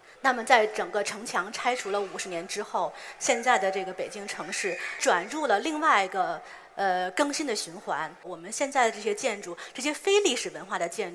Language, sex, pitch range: Chinese, female, 195-290 Hz